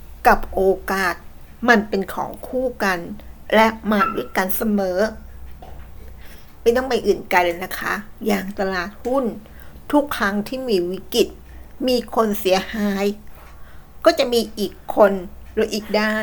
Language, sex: Thai, female